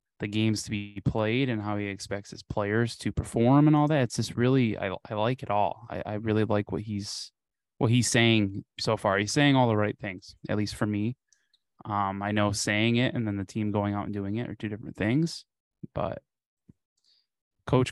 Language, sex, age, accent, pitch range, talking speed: English, male, 20-39, American, 105-120 Hz, 220 wpm